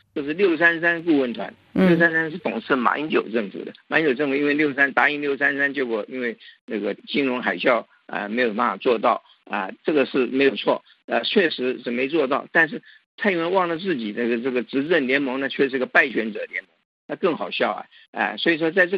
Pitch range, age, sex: 130-180 Hz, 50-69, male